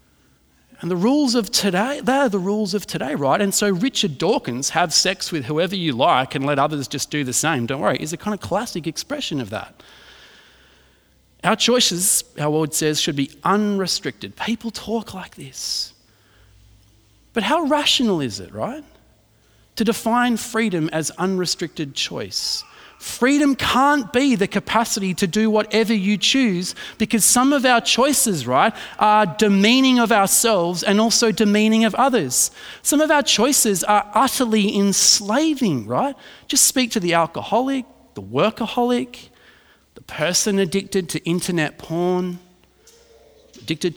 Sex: male